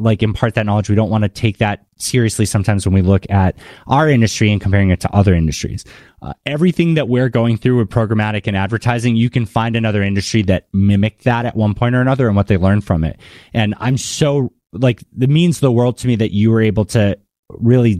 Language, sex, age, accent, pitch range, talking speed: English, male, 30-49, American, 105-130 Hz, 230 wpm